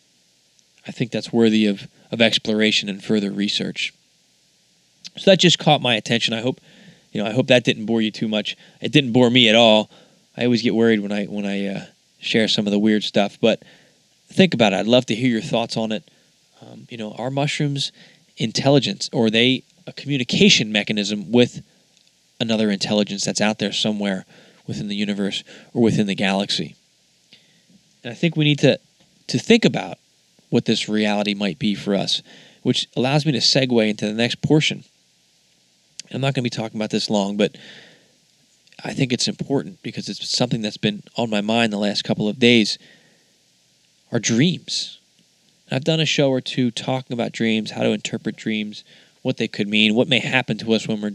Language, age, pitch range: English, 20-39, 105-140 Hz